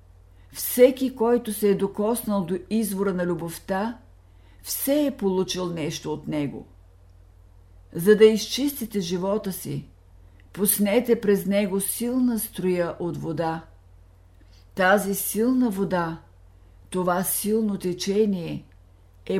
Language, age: Bulgarian, 50-69